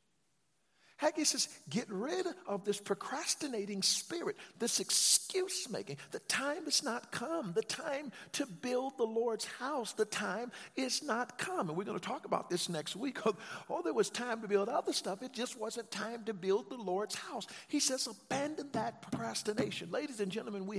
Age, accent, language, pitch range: 50-69, American, English, 155-220 Hz